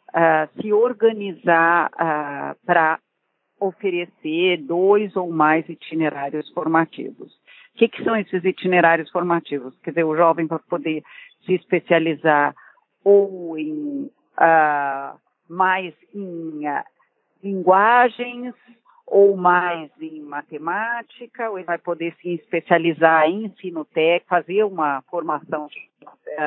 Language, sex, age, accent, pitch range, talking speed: Portuguese, female, 50-69, Brazilian, 165-220 Hz, 95 wpm